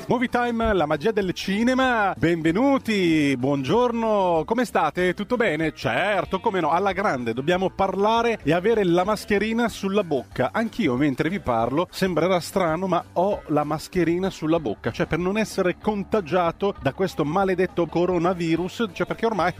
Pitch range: 140-205 Hz